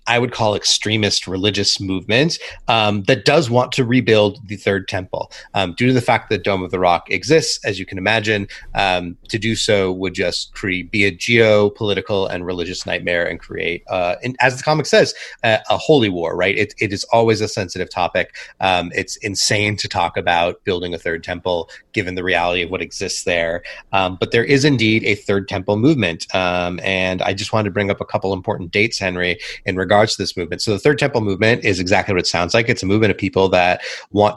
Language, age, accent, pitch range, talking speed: English, 30-49, American, 95-110 Hz, 220 wpm